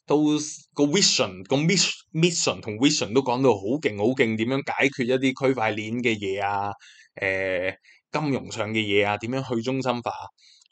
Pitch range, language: 105-155 Hz, Chinese